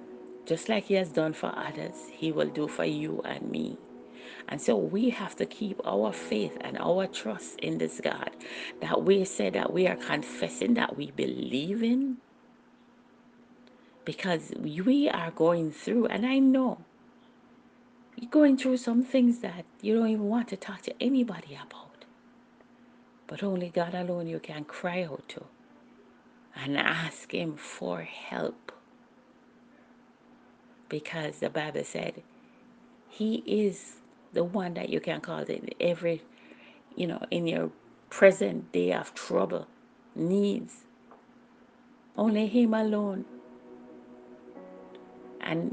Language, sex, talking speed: English, female, 135 wpm